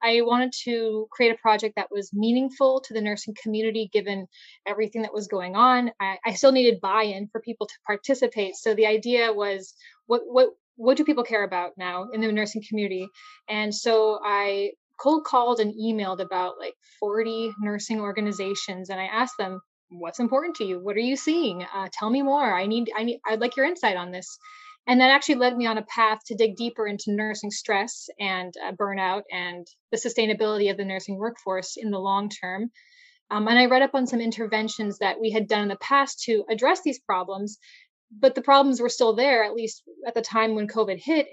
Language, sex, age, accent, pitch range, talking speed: English, female, 10-29, American, 205-245 Hz, 210 wpm